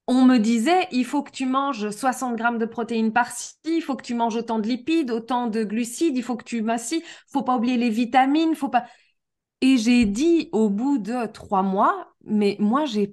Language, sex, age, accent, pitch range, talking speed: French, female, 20-39, French, 225-300 Hz, 235 wpm